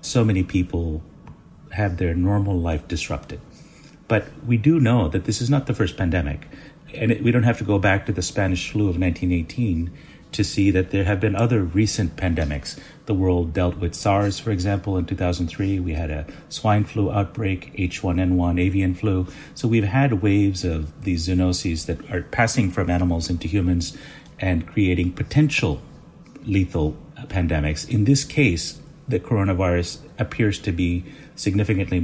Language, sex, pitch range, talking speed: English, male, 85-110 Hz, 165 wpm